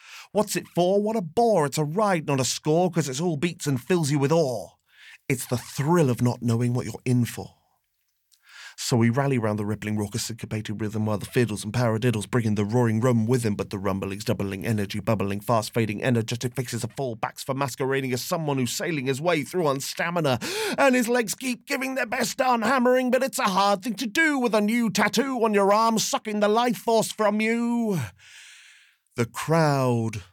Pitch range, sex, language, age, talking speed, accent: 110-165 Hz, male, English, 40-59, 210 wpm, British